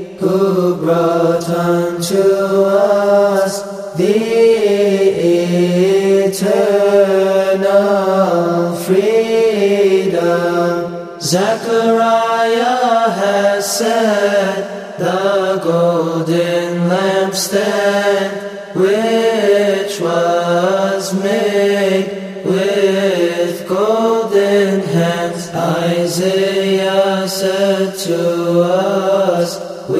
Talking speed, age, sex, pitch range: 45 wpm, 30-49, male, 175-200 Hz